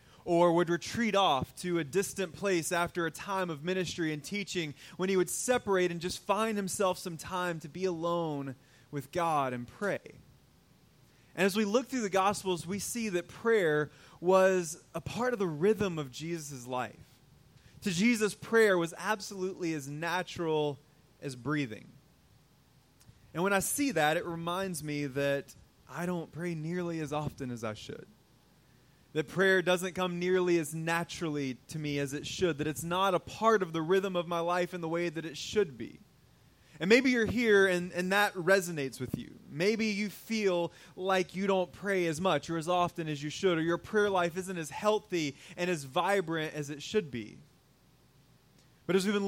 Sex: male